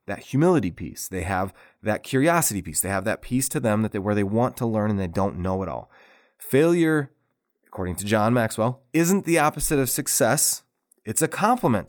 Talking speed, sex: 200 wpm, male